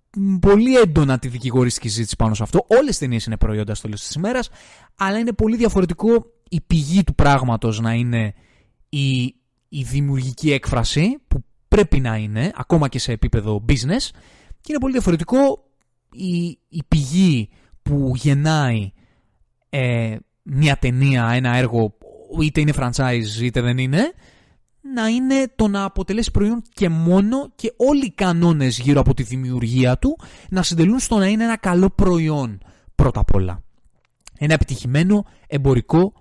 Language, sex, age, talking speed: Greek, male, 20-39, 150 wpm